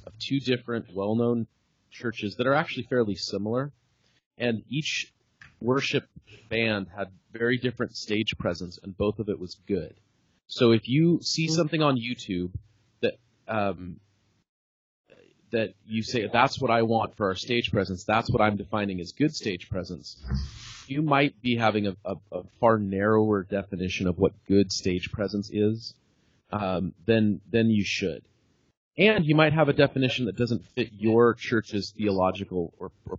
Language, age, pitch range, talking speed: English, 30-49, 95-120 Hz, 160 wpm